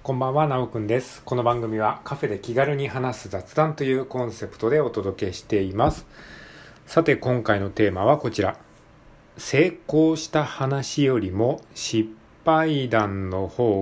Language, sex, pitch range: Japanese, male, 95-140 Hz